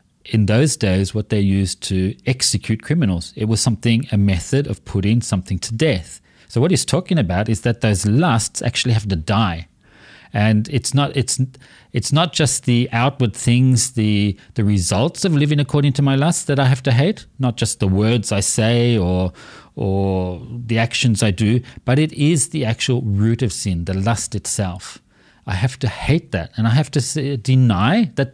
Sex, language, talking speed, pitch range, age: male, English, 195 wpm, 100-135 Hz, 40-59